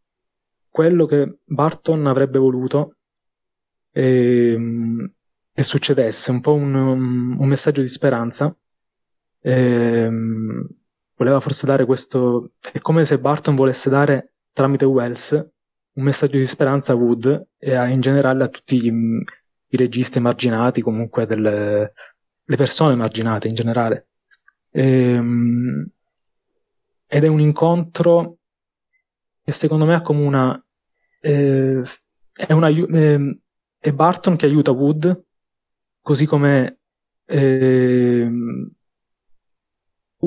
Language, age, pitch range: Italian, 20-39, 120-150 Hz